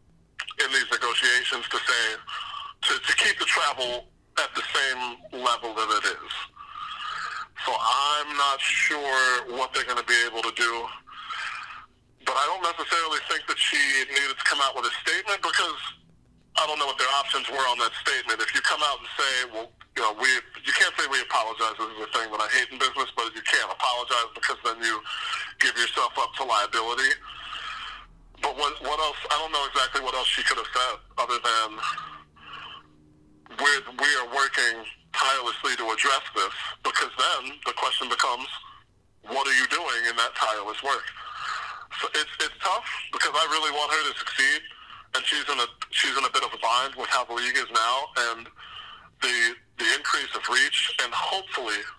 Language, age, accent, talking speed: English, 40-59, American, 185 wpm